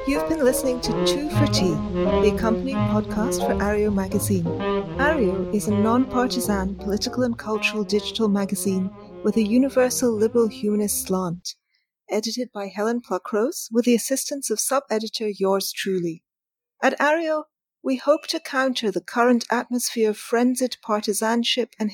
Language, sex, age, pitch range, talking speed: English, female, 40-59, 205-250 Hz, 140 wpm